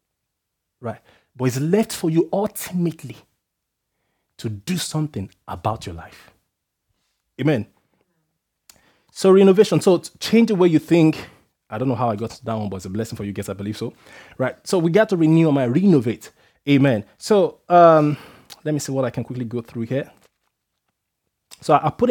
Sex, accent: male, Nigerian